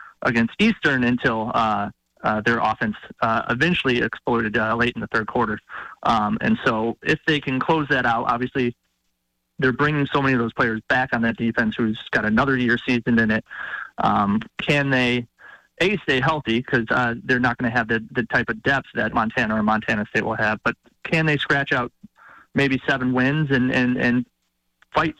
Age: 30-49